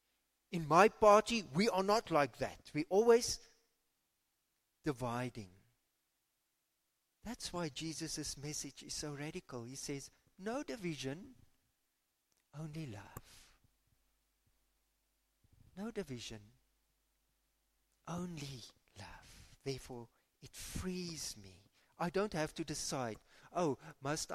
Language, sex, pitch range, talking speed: English, male, 95-150 Hz, 95 wpm